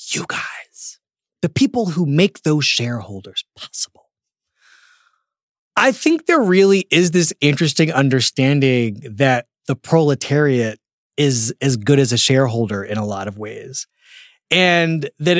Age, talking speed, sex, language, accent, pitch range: 30-49, 130 wpm, male, English, American, 130-185 Hz